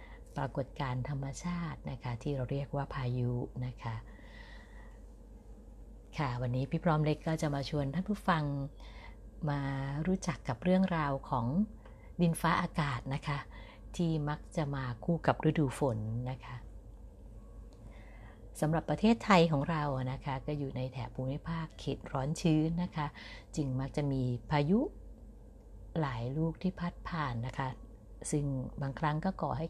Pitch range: 125-165 Hz